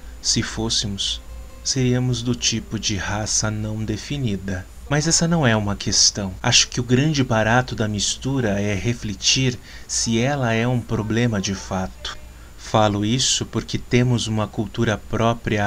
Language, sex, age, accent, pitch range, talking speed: Portuguese, male, 30-49, Brazilian, 100-125 Hz, 145 wpm